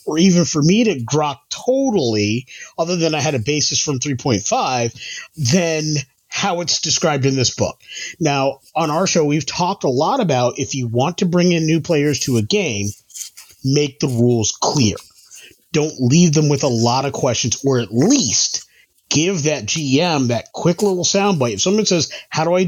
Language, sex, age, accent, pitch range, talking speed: English, male, 30-49, American, 130-175 Hz, 190 wpm